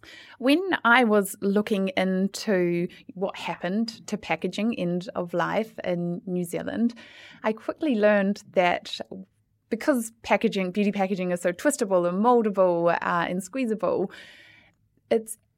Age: 20-39